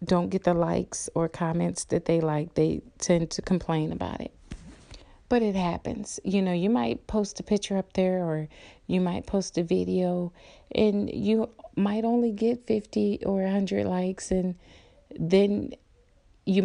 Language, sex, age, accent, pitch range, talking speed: English, female, 30-49, American, 175-215 Hz, 160 wpm